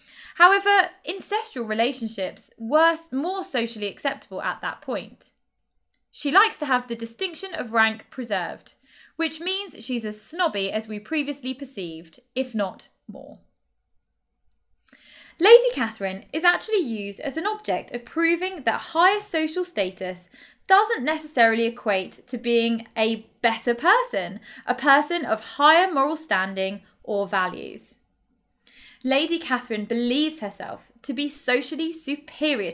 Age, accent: 20-39, British